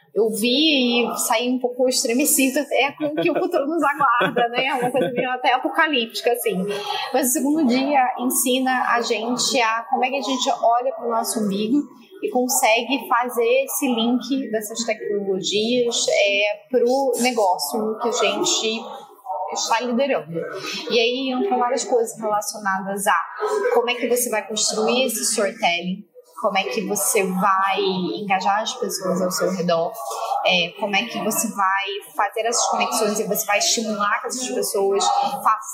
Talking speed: 165 wpm